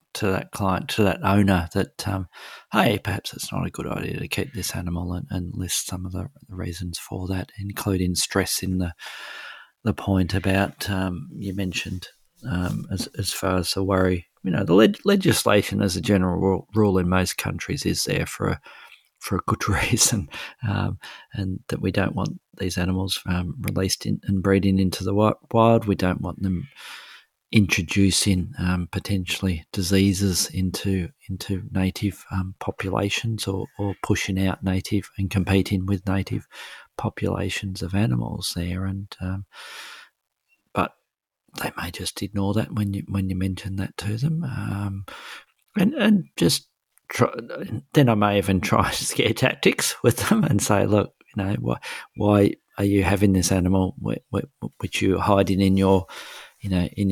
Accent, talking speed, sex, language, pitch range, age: Australian, 165 wpm, male, English, 95-100 Hz, 40-59